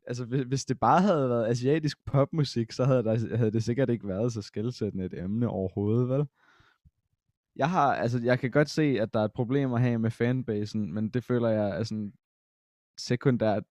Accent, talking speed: native, 175 wpm